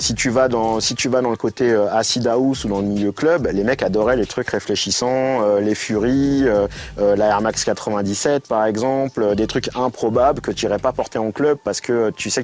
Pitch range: 105-130 Hz